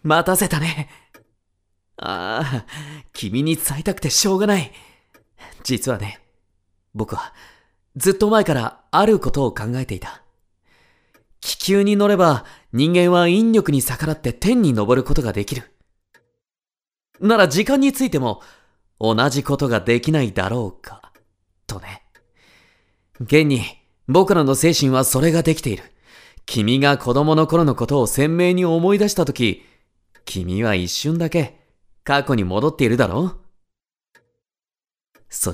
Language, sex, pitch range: Japanese, male, 110-175 Hz